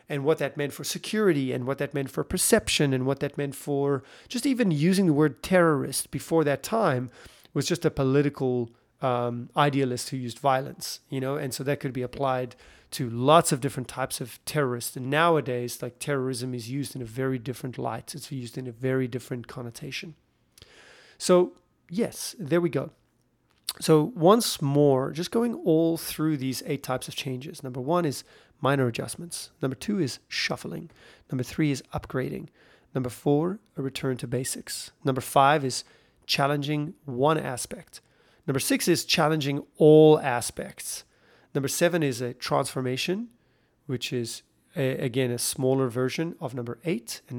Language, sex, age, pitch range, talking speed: English, male, 30-49, 130-160 Hz, 165 wpm